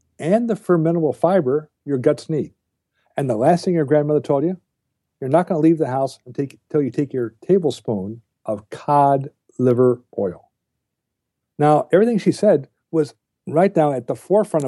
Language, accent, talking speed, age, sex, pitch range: English, American, 175 wpm, 60-79, male, 125-160 Hz